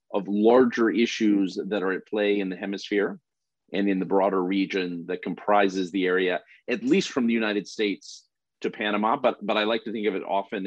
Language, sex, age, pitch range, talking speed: English, male, 40-59, 95-115 Hz, 200 wpm